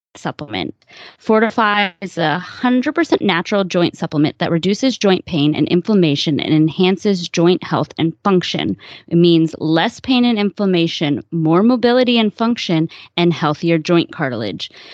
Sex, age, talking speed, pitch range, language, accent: female, 20-39, 140 wpm, 175-250 Hz, English, American